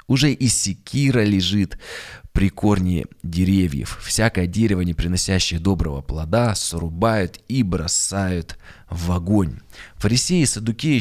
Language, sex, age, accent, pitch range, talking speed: Russian, male, 20-39, native, 85-105 Hz, 115 wpm